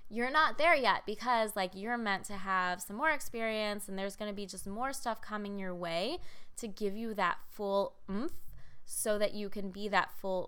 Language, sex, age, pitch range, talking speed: English, female, 20-39, 185-220 Hz, 210 wpm